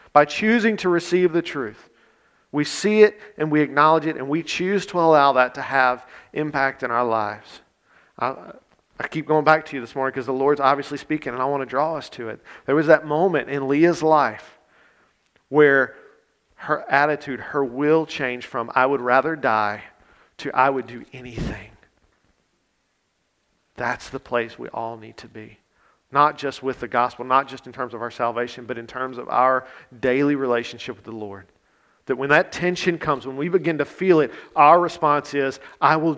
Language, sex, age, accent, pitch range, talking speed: English, male, 40-59, American, 125-160 Hz, 190 wpm